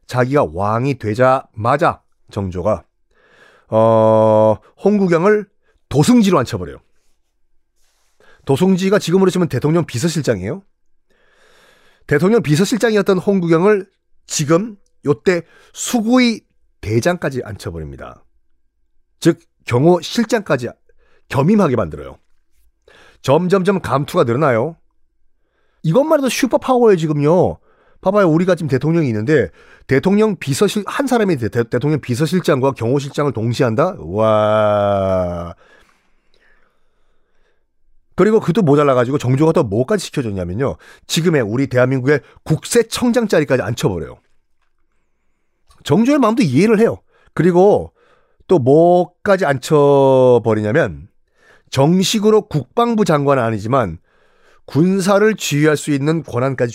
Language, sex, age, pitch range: Korean, male, 40-59, 120-195 Hz